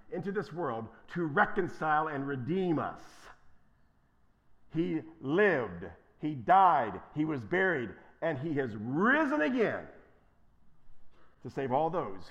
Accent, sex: American, male